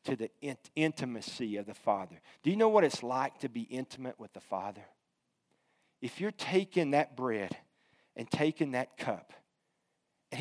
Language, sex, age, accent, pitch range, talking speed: English, male, 50-69, American, 130-165 Hz, 165 wpm